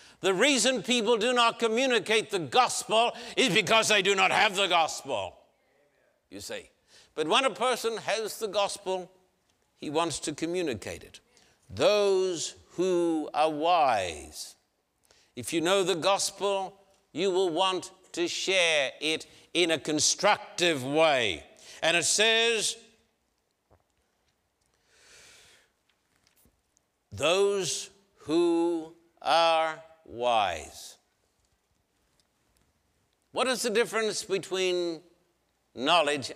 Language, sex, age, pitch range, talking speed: English, male, 60-79, 170-225 Hz, 100 wpm